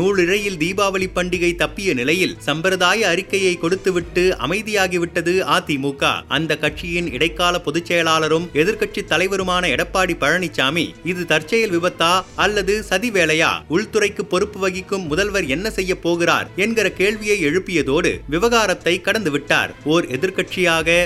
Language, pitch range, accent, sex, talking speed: Tamil, 165-195 Hz, native, male, 105 wpm